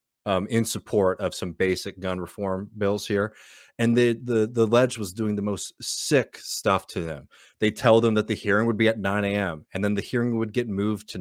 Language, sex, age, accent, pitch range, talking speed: English, male, 30-49, American, 95-110 Hz, 225 wpm